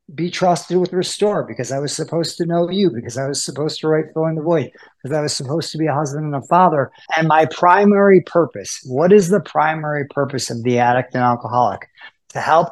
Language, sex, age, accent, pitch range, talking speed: English, male, 50-69, American, 125-160 Hz, 220 wpm